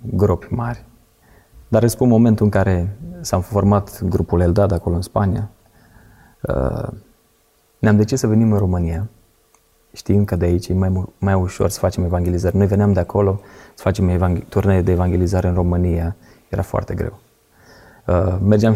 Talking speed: 155 wpm